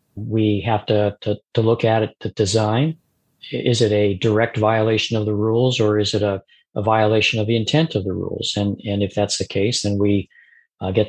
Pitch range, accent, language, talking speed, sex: 100-110 Hz, American, English, 215 wpm, male